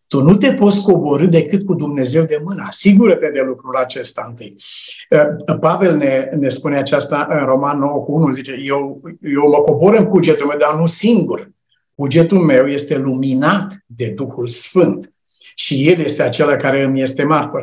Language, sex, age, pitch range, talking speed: Romanian, male, 60-79, 145-200 Hz, 165 wpm